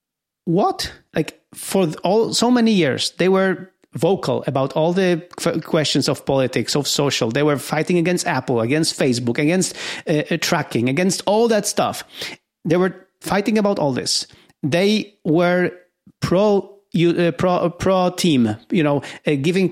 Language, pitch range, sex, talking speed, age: English, 155-205 Hz, male, 150 wpm, 40-59